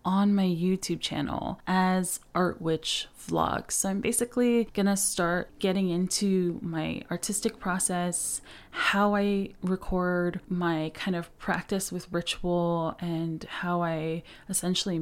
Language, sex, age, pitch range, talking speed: English, female, 20-39, 170-195 Hz, 125 wpm